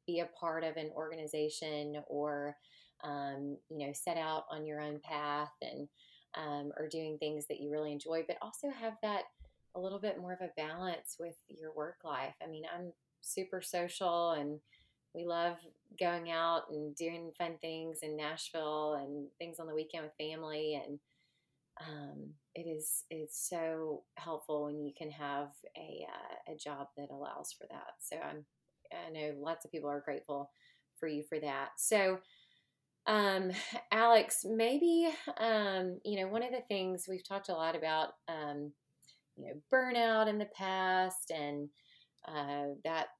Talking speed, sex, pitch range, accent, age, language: 170 wpm, female, 150-175 Hz, American, 30-49, English